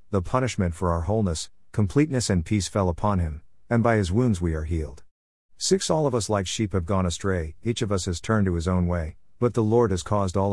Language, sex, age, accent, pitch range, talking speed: English, male, 50-69, American, 85-120 Hz, 240 wpm